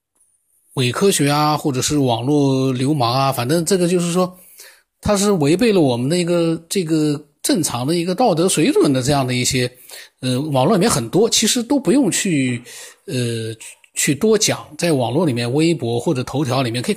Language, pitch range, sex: Chinese, 125-165 Hz, male